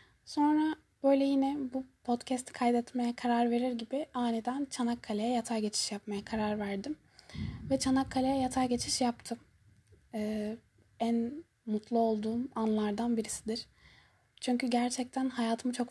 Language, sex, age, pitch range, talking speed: Turkish, female, 10-29, 215-255 Hz, 115 wpm